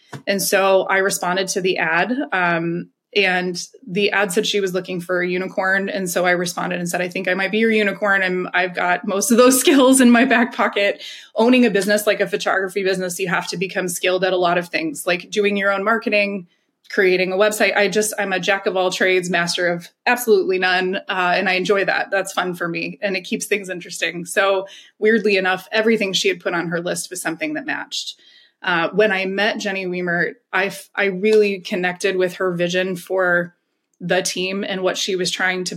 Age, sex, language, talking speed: 20-39, female, English, 215 wpm